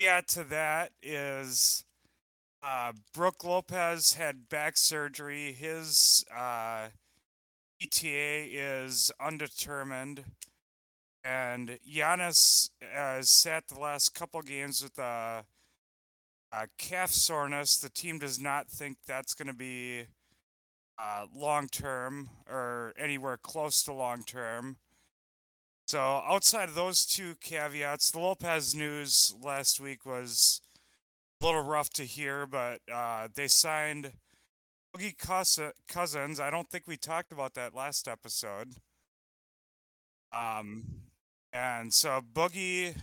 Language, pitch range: English, 120-155 Hz